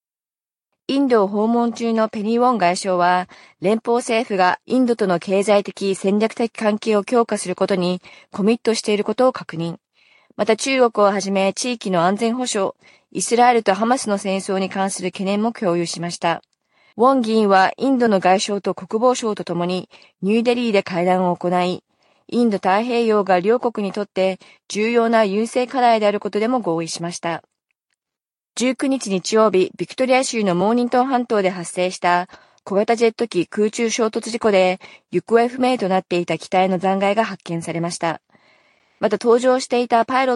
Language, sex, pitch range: Japanese, female, 185-235 Hz